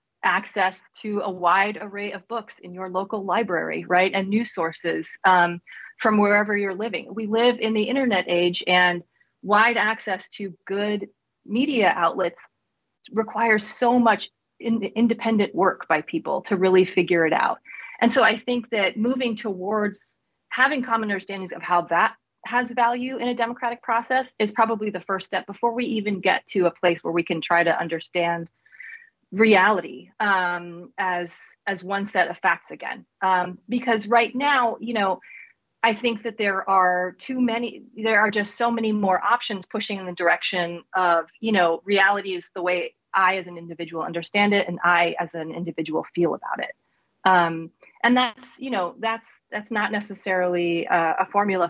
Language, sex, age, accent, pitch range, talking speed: English, female, 30-49, American, 180-225 Hz, 170 wpm